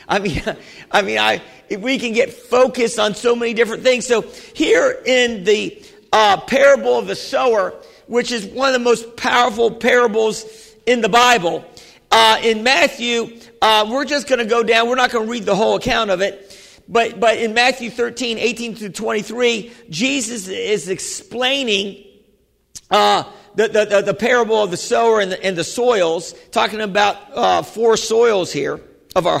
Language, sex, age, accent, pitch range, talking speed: English, male, 50-69, American, 205-250 Hz, 180 wpm